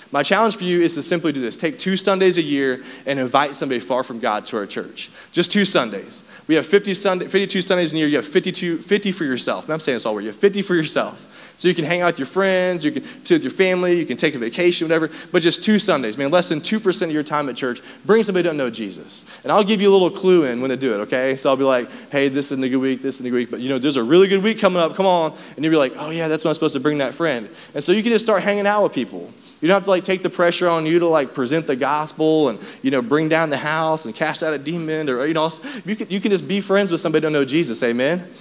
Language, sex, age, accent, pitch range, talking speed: English, male, 20-39, American, 140-185 Hz, 310 wpm